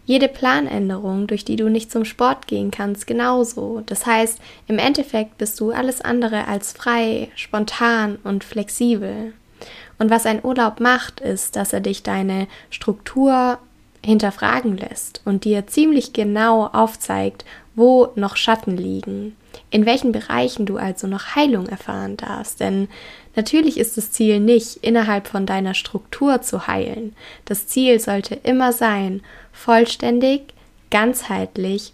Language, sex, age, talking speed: German, female, 10-29, 140 wpm